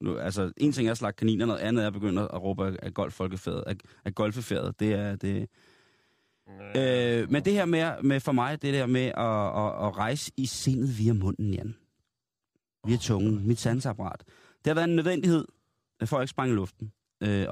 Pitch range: 100-125 Hz